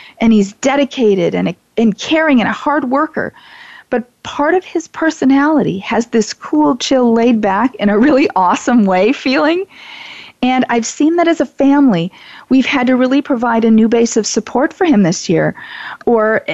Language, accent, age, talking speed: English, American, 40-59, 180 wpm